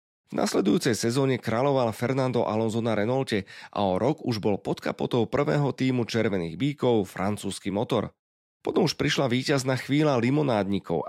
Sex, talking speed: male, 145 wpm